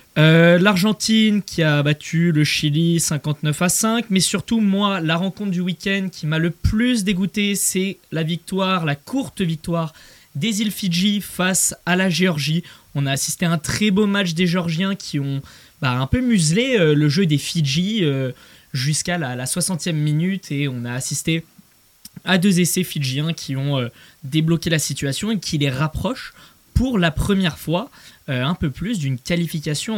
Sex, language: male, French